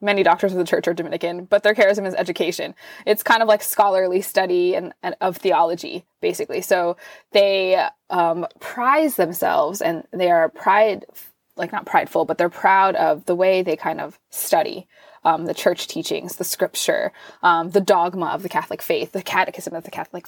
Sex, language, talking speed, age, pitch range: female, English, 185 wpm, 20-39, 170-210 Hz